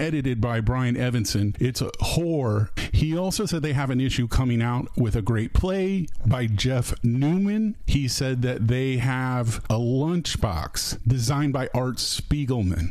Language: English